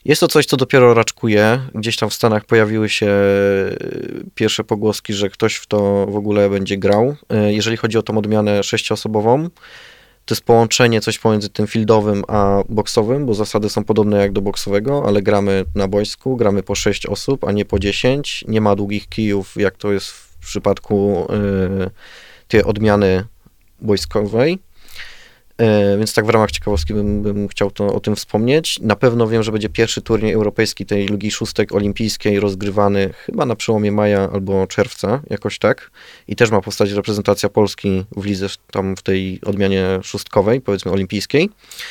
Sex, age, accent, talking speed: male, 20-39, native, 165 wpm